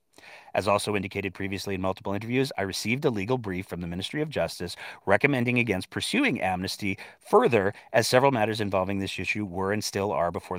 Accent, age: American, 30-49